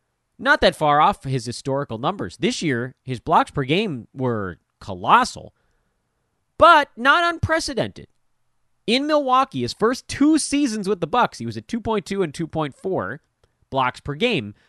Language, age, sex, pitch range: English, 30-49, male, 120-180 Hz